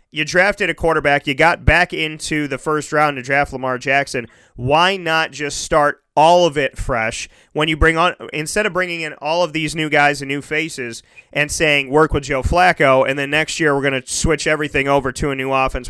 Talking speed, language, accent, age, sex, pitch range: 225 wpm, English, American, 30-49, male, 140-165 Hz